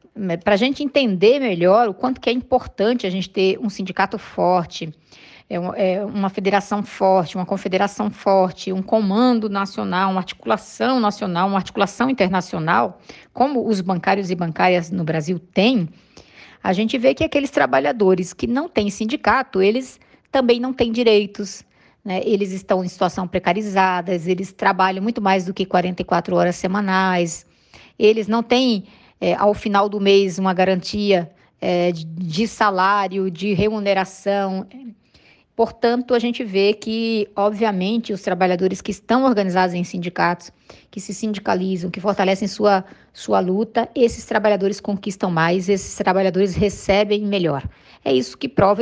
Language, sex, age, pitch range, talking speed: Portuguese, female, 20-39, 185-220 Hz, 145 wpm